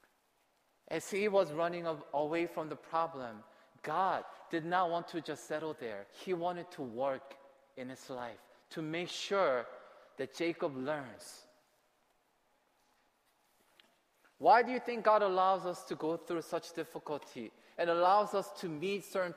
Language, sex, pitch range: Korean, male, 155-195 Hz